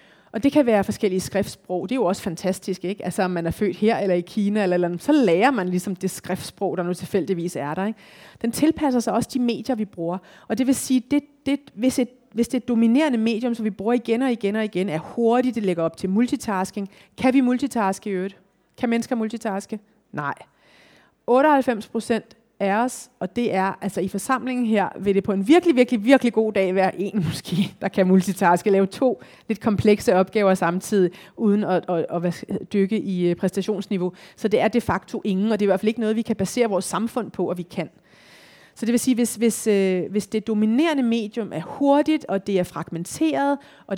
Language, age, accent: Danish, 30-49, native